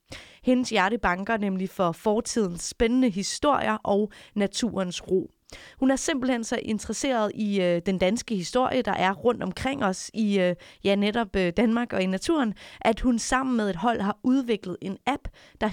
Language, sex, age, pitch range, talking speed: Danish, female, 30-49, 190-235 Hz, 165 wpm